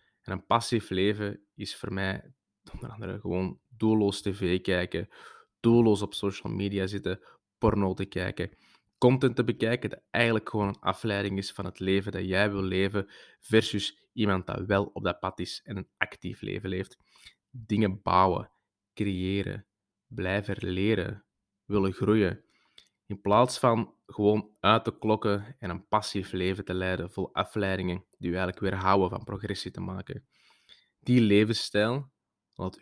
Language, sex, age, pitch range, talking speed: Dutch, male, 20-39, 95-105 Hz, 155 wpm